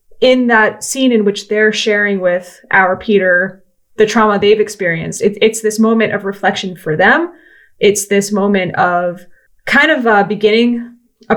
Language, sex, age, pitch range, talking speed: English, female, 20-39, 190-230 Hz, 160 wpm